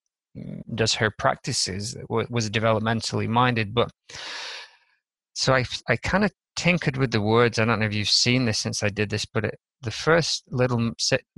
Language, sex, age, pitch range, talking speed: English, male, 20-39, 105-120 Hz, 160 wpm